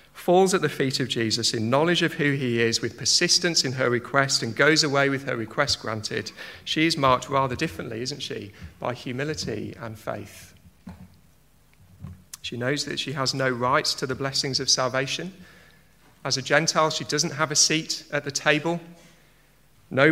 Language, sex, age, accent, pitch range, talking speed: English, male, 40-59, British, 125-150 Hz, 175 wpm